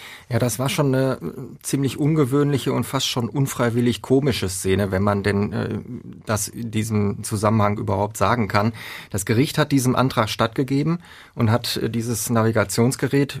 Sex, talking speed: male, 150 wpm